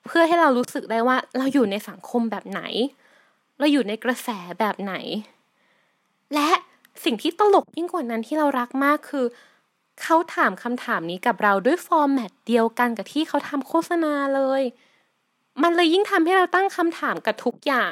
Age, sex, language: 20-39, female, Thai